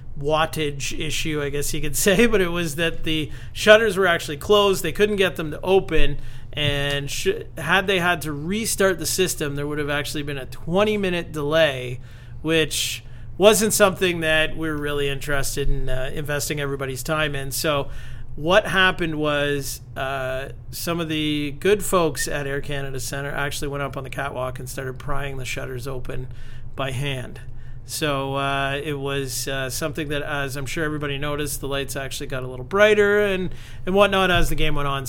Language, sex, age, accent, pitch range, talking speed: English, male, 40-59, American, 135-170 Hz, 180 wpm